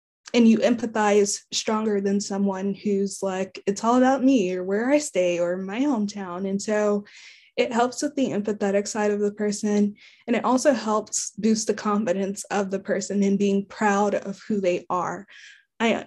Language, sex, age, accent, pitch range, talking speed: English, female, 20-39, American, 200-230 Hz, 180 wpm